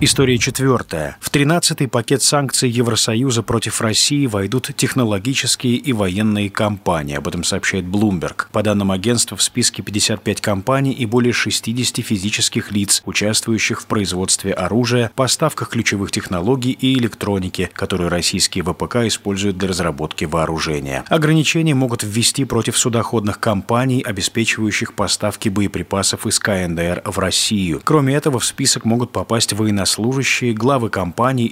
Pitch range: 100-125 Hz